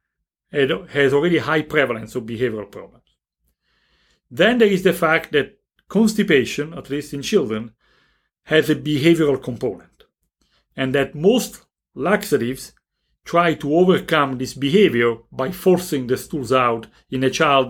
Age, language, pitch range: 40-59, English, 130-180 Hz